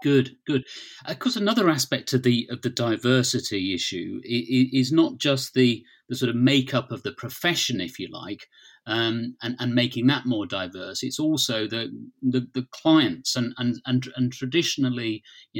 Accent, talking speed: British, 175 wpm